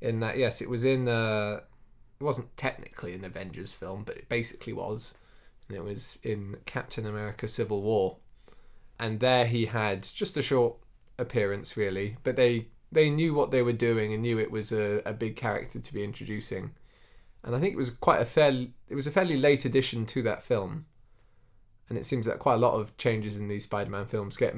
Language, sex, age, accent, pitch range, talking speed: English, male, 20-39, British, 105-120 Hz, 205 wpm